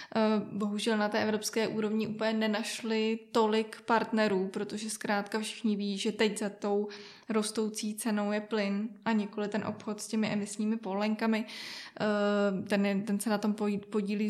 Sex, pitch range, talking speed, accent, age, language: female, 205-220 Hz, 145 wpm, native, 20-39, Czech